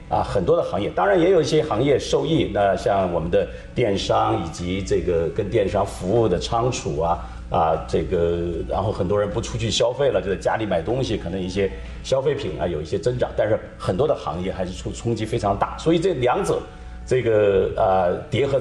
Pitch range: 85-120 Hz